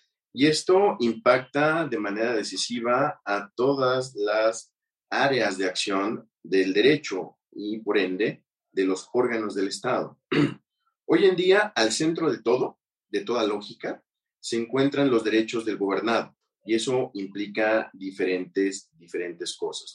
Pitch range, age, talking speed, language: 105-145 Hz, 40-59, 130 wpm, Spanish